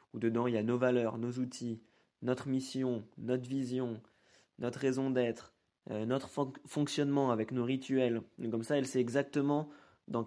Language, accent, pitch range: French, French, 115-135 Hz